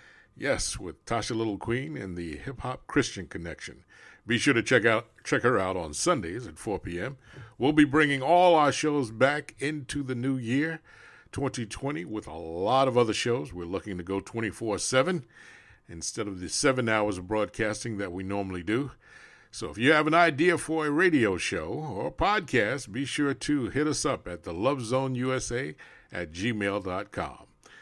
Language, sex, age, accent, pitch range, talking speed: English, male, 60-79, American, 100-135 Hz, 175 wpm